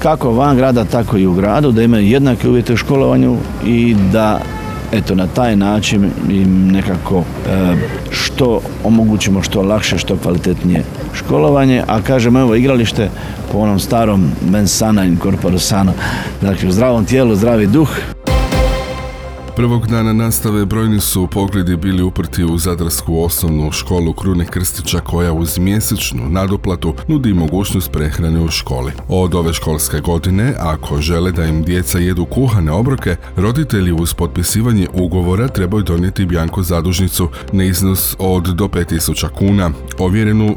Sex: male